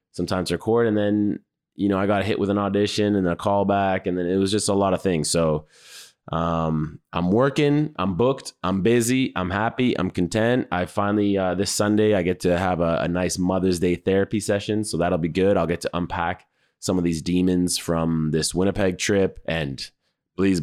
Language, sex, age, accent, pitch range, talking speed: English, male, 20-39, American, 85-105 Hz, 205 wpm